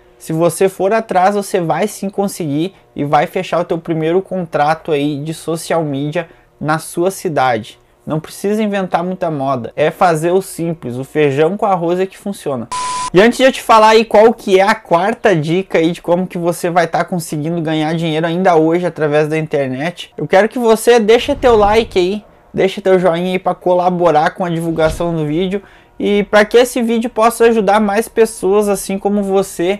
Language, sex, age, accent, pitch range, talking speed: Portuguese, male, 20-39, Brazilian, 160-205 Hz, 195 wpm